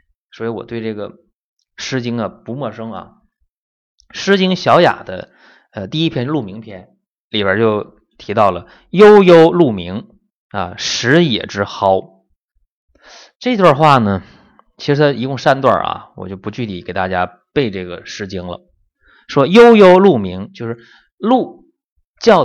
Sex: male